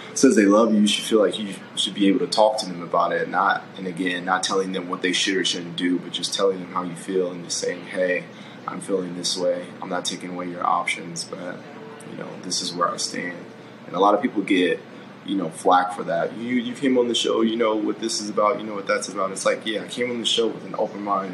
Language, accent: English, American